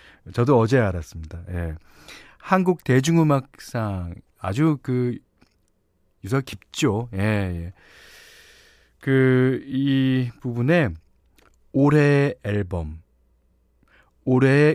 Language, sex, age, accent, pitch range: Korean, male, 40-59, native, 95-145 Hz